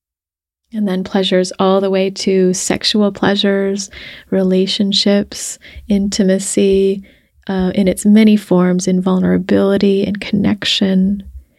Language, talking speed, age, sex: English, 105 wpm, 20-39, female